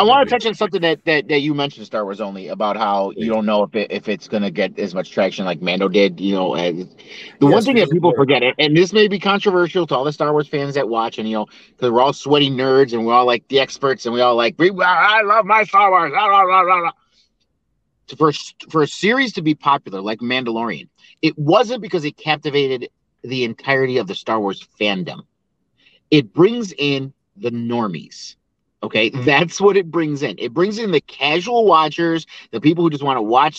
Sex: male